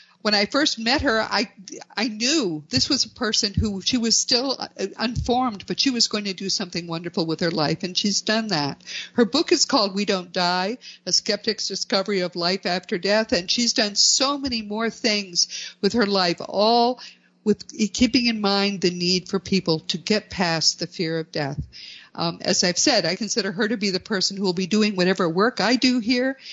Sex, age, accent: female, 50-69, American